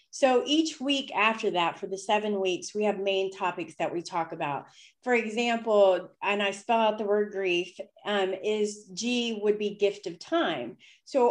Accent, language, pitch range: American, English, 180-225 Hz